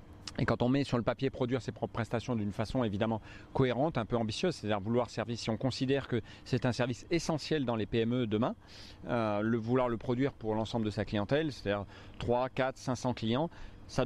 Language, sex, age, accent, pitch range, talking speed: French, male, 30-49, French, 110-130 Hz, 205 wpm